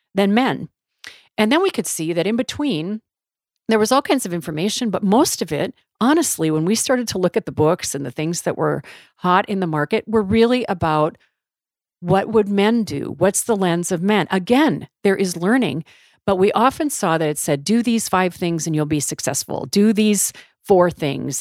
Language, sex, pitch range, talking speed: English, female, 165-225 Hz, 205 wpm